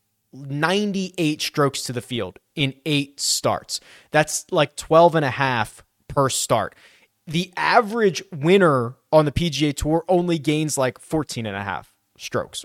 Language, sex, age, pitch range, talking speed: English, male, 20-39, 140-180 Hz, 145 wpm